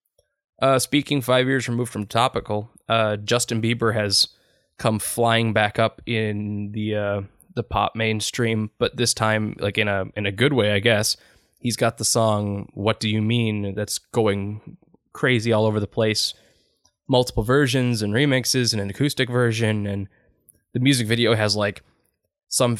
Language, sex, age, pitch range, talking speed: English, male, 10-29, 105-125 Hz, 165 wpm